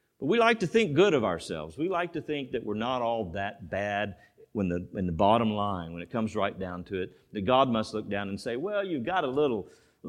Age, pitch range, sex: 50-69, 95-150 Hz, male